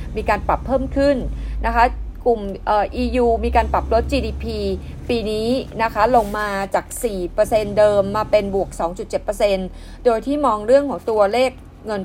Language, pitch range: Thai, 210-260 Hz